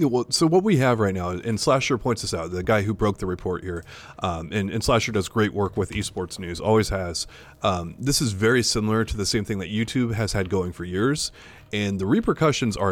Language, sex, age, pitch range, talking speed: English, male, 30-49, 100-125 Hz, 235 wpm